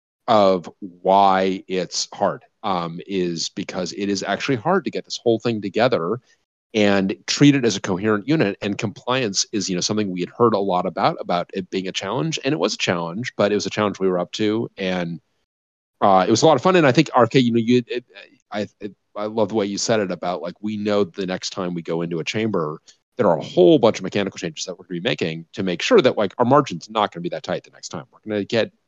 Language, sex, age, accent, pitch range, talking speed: English, male, 30-49, American, 95-120 Hz, 260 wpm